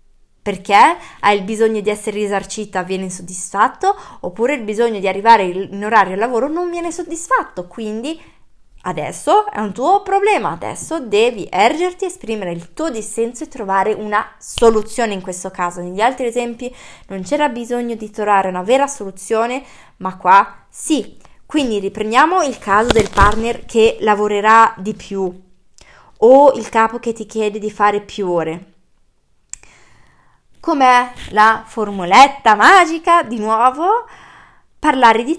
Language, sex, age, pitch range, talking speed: Italian, female, 20-39, 200-280 Hz, 140 wpm